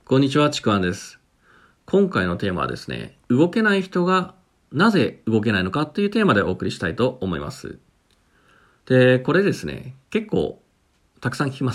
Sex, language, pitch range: male, Japanese, 105-165 Hz